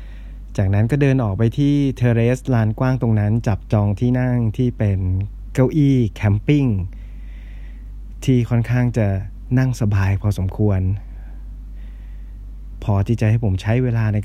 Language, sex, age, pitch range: Thai, male, 20-39, 100-120 Hz